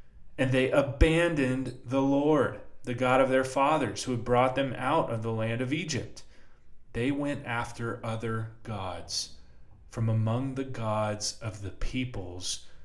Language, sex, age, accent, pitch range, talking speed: English, male, 30-49, American, 95-125 Hz, 150 wpm